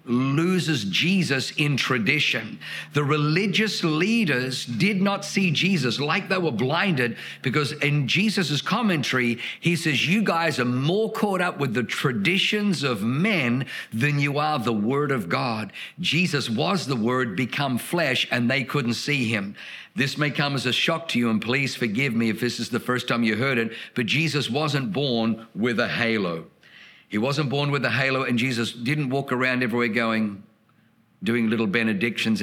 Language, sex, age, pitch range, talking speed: English, male, 50-69, 120-160 Hz, 175 wpm